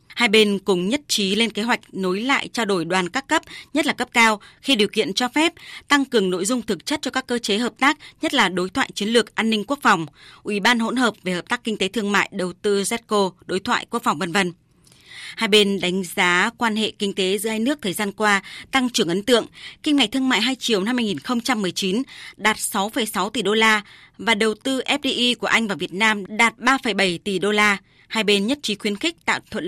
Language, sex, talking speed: Vietnamese, female, 240 wpm